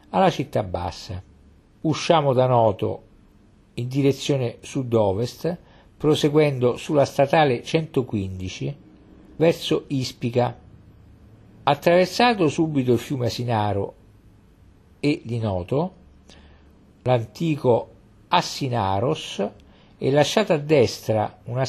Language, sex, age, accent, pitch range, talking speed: Italian, male, 50-69, native, 105-155 Hz, 85 wpm